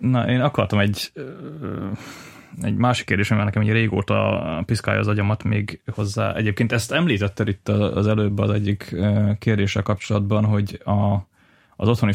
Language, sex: Hungarian, male